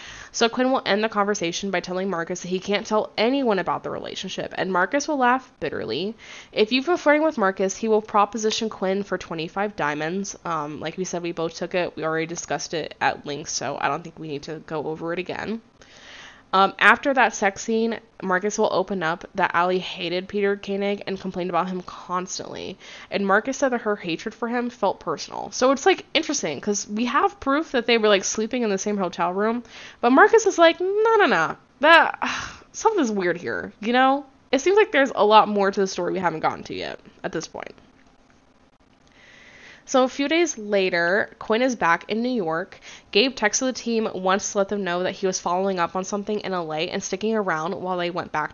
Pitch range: 185-245 Hz